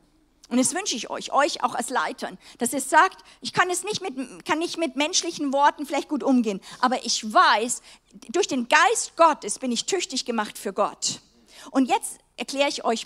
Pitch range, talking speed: 230-315 Hz, 200 wpm